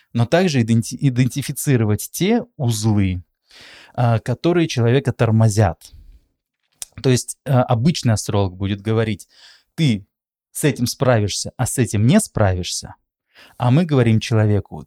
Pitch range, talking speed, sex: 105-135 Hz, 110 wpm, male